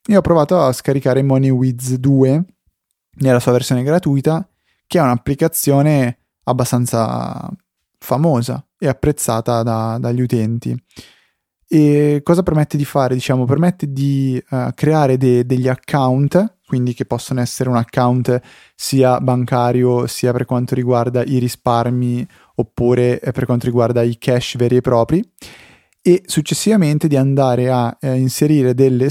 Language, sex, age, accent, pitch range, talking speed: Italian, male, 20-39, native, 120-140 Hz, 130 wpm